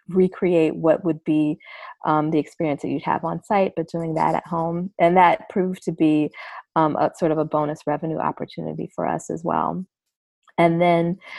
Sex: female